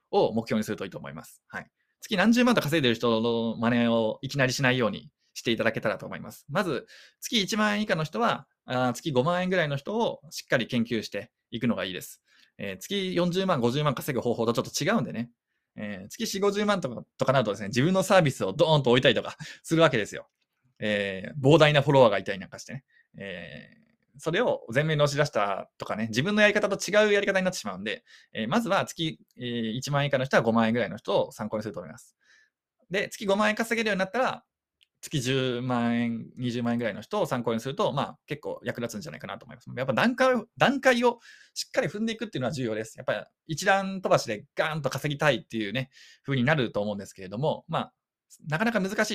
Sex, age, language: male, 20-39, Japanese